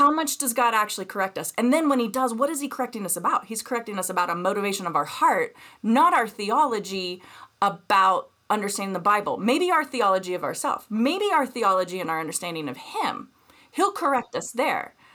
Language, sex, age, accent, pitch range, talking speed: English, female, 30-49, American, 180-255 Hz, 200 wpm